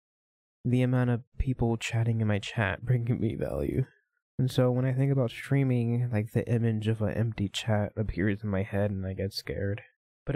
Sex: male